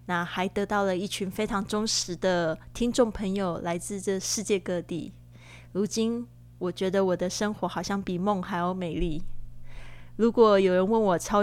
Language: Chinese